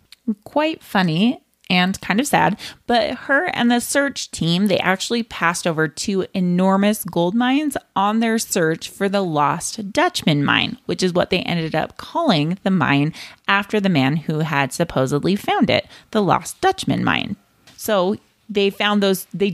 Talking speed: 165 wpm